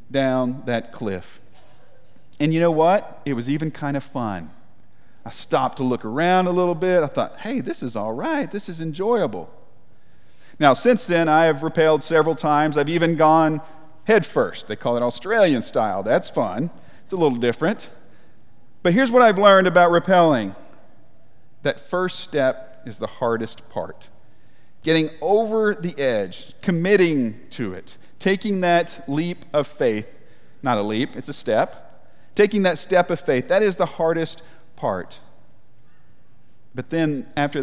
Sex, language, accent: male, English, American